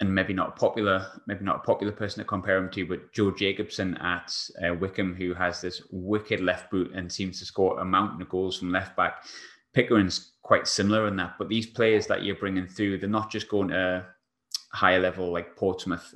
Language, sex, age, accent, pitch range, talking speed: English, male, 20-39, British, 90-105 Hz, 215 wpm